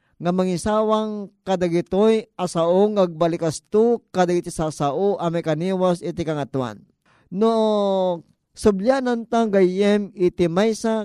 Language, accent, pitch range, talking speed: Filipino, native, 170-210 Hz, 85 wpm